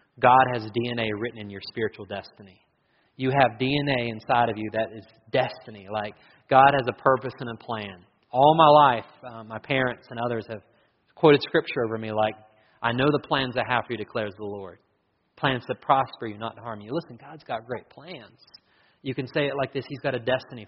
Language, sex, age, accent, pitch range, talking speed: English, male, 30-49, American, 110-135 Hz, 210 wpm